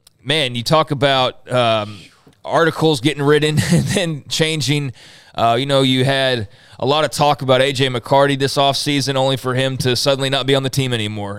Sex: male